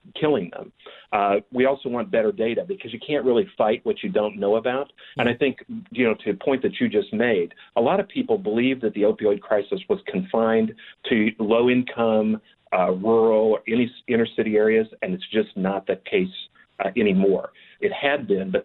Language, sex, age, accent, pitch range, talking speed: English, male, 40-59, American, 105-130 Hz, 195 wpm